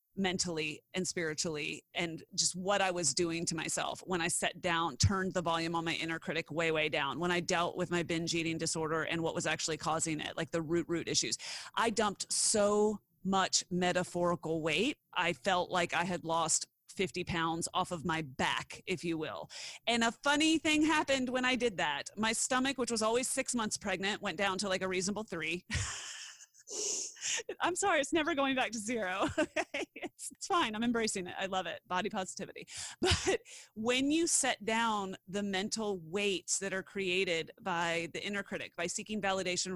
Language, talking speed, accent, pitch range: English, 190 wpm, American, 170-245 Hz